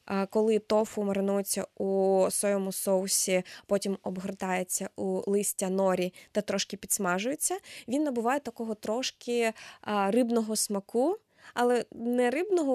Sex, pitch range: female, 190-230 Hz